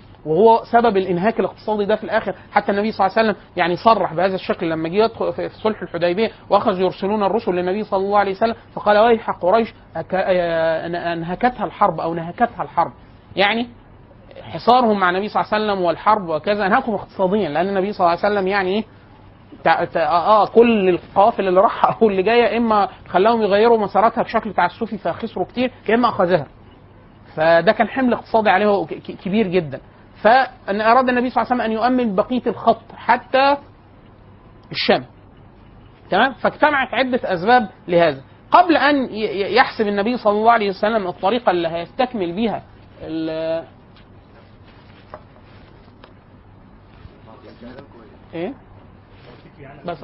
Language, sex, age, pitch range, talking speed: Arabic, male, 30-49, 150-225 Hz, 145 wpm